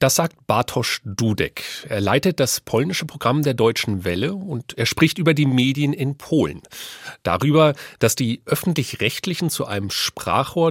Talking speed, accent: 150 wpm, German